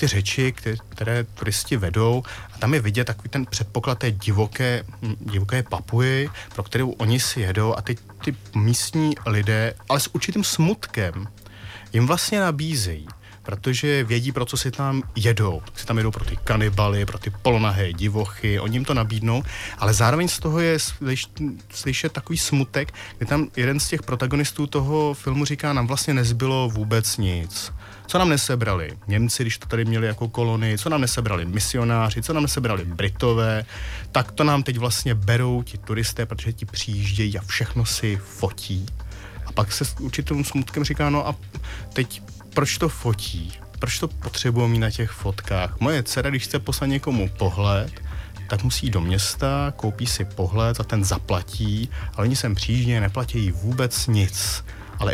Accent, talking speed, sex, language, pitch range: native, 170 wpm, male, Czech, 100-130 Hz